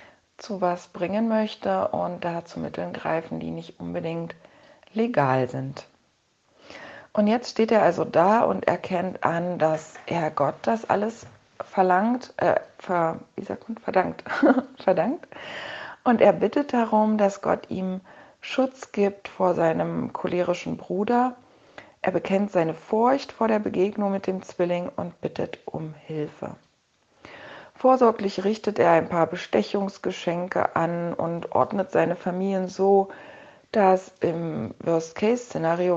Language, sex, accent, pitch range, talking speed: German, female, German, 165-215 Hz, 125 wpm